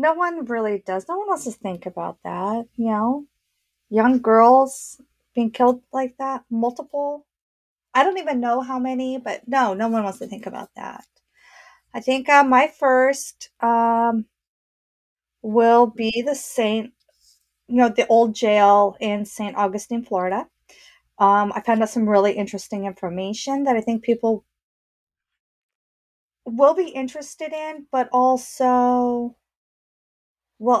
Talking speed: 140 wpm